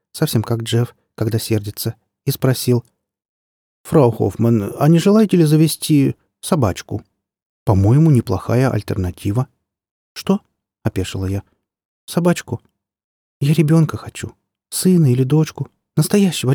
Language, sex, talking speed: Russian, male, 105 wpm